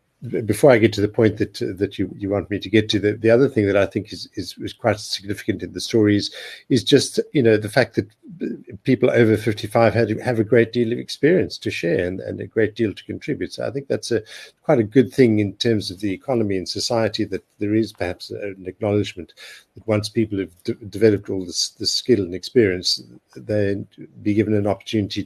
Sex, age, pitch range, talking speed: male, 50-69, 95-115 Hz, 230 wpm